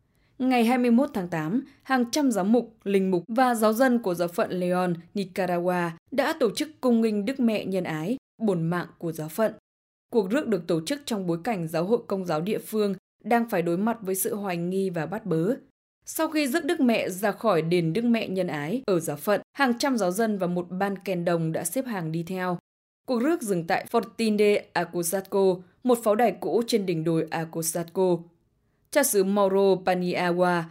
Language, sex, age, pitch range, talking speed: English, female, 20-39, 170-230 Hz, 205 wpm